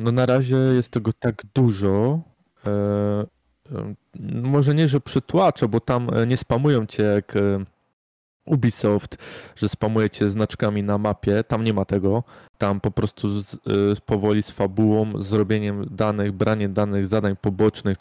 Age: 20-39